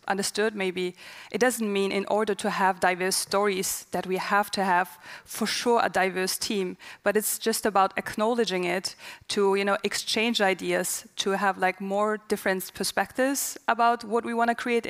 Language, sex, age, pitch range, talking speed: English, female, 20-39, 190-215 Hz, 175 wpm